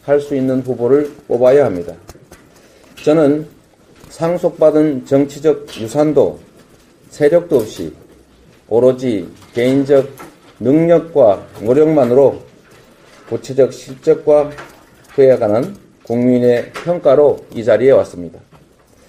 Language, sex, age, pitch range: Korean, male, 40-59, 130-160 Hz